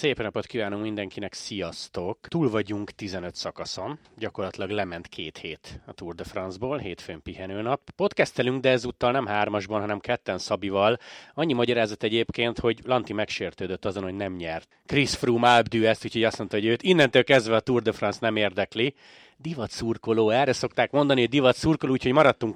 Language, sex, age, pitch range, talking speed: Hungarian, male, 30-49, 105-130 Hz, 165 wpm